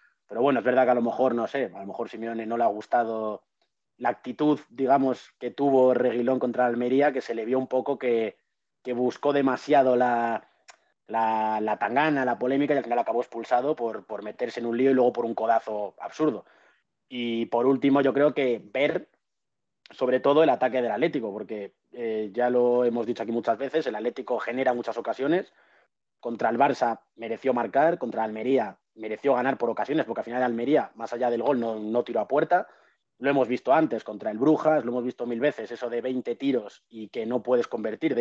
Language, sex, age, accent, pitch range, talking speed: Spanish, male, 30-49, Spanish, 115-135 Hz, 205 wpm